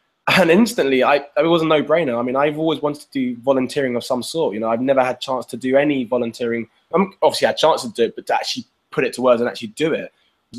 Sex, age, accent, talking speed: male, 20-39, British, 270 wpm